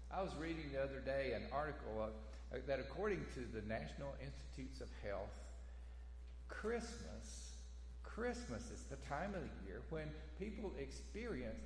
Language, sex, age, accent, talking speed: English, male, 50-69, American, 145 wpm